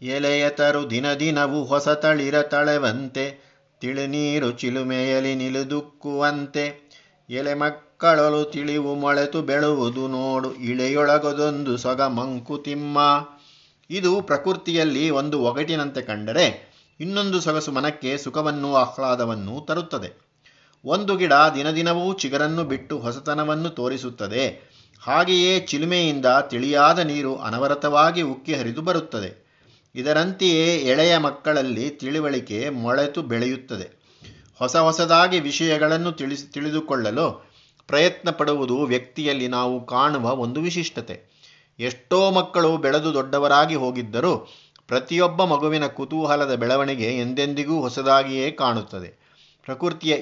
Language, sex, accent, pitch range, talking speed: Kannada, male, native, 130-155 Hz, 90 wpm